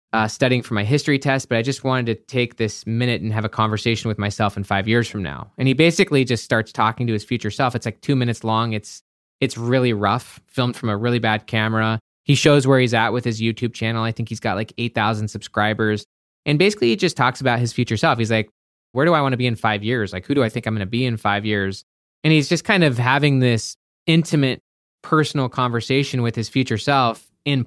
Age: 20-39